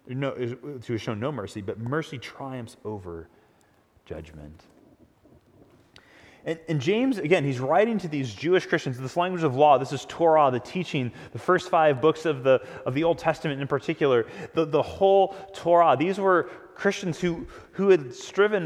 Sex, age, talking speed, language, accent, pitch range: male, 30-49, 165 wpm, English, American, 130-185 Hz